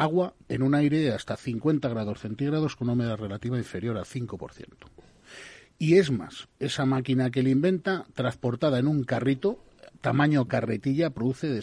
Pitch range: 110-135 Hz